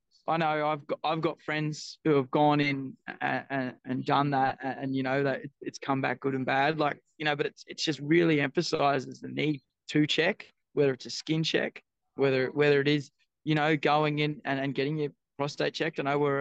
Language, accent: English, Australian